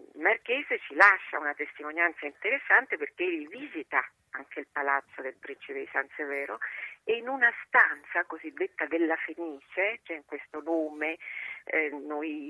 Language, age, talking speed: Italian, 40-59, 145 wpm